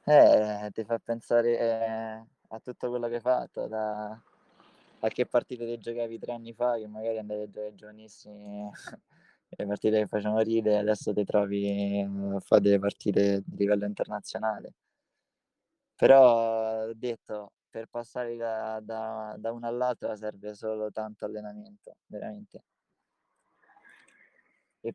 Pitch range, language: 105-115 Hz, Italian